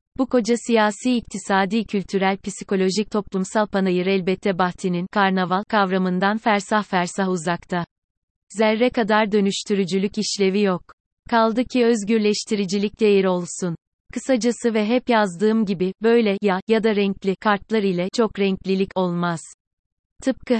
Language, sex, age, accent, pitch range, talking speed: Turkish, female, 30-49, native, 190-225 Hz, 120 wpm